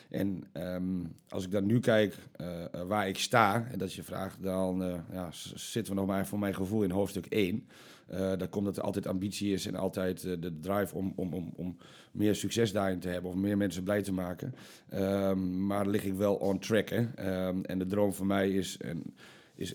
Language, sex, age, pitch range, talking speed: Dutch, male, 40-59, 95-110 Hz, 230 wpm